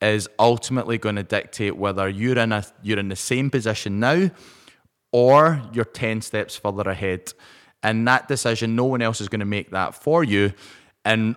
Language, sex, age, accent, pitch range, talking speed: English, male, 20-39, British, 100-125 Hz, 175 wpm